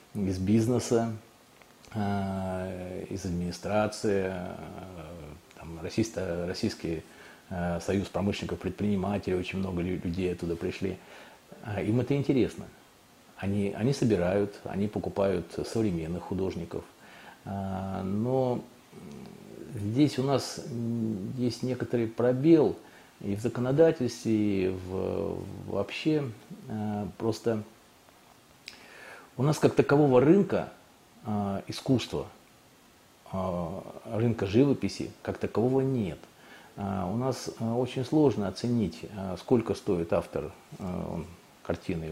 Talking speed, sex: 85 wpm, male